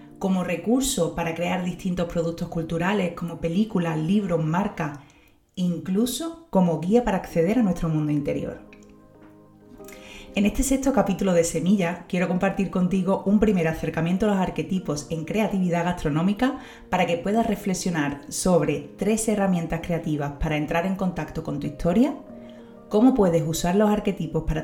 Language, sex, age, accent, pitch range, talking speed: Spanish, female, 30-49, Spanish, 160-205 Hz, 145 wpm